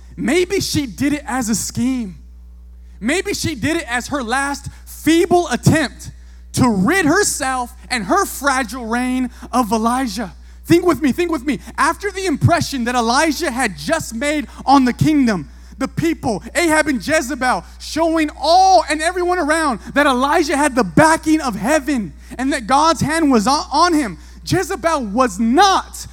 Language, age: English, 20-39